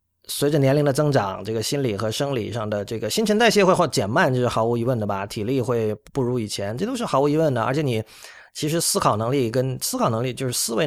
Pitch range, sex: 110-140 Hz, male